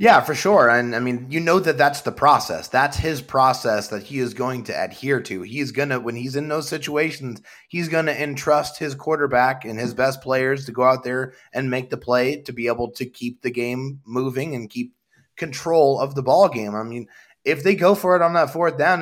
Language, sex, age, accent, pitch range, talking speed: English, male, 30-49, American, 120-150 Hz, 235 wpm